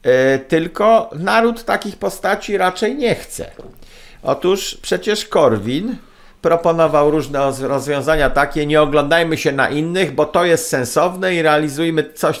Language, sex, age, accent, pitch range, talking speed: Polish, male, 50-69, native, 150-185 Hz, 125 wpm